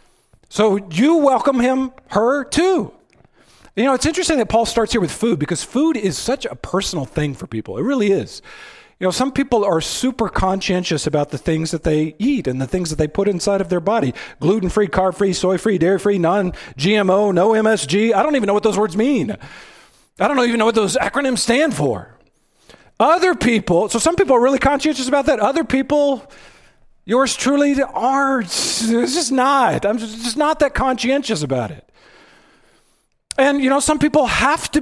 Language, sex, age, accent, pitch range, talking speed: English, male, 40-59, American, 180-270 Hz, 185 wpm